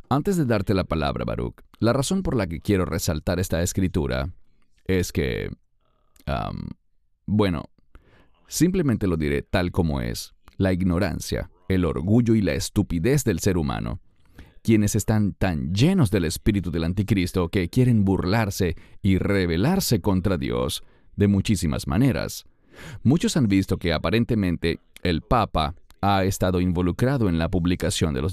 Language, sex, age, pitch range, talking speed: English, male, 40-59, 85-110 Hz, 145 wpm